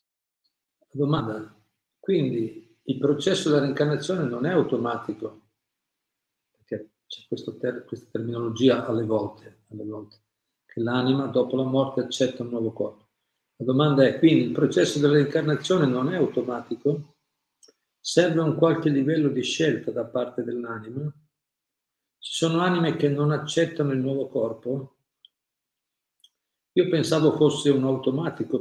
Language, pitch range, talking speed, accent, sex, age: Italian, 120-145 Hz, 130 wpm, native, male, 50-69